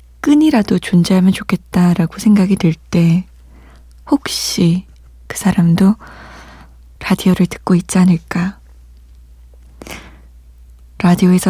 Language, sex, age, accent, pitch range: Korean, female, 20-39, native, 155-200 Hz